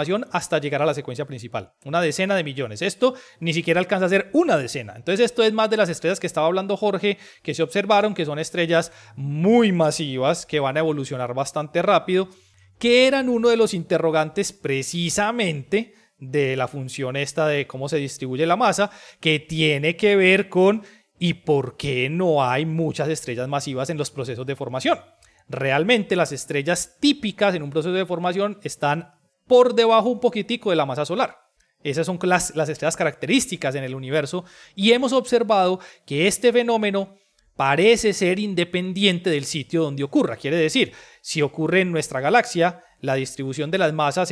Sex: male